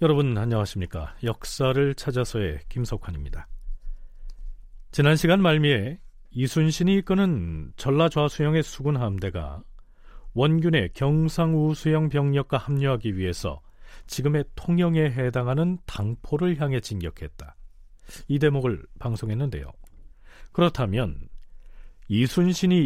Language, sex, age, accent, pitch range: Korean, male, 40-59, native, 95-160 Hz